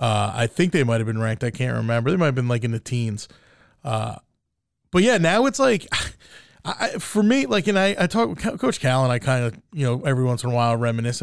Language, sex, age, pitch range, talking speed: English, male, 20-39, 115-170 Hz, 250 wpm